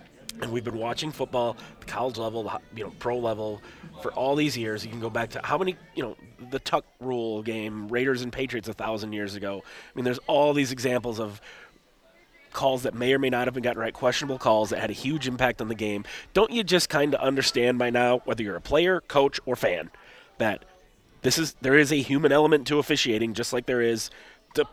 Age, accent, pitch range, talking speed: 30-49, American, 115-140 Hz, 230 wpm